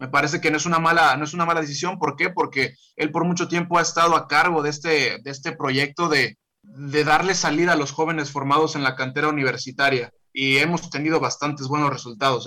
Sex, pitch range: male, 140-165 Hz